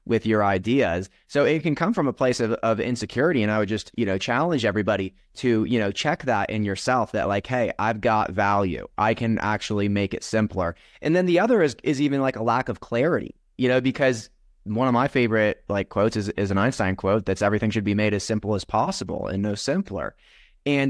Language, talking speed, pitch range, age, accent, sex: English, 225 wpm, 100-130 Hz, 20-39, American, male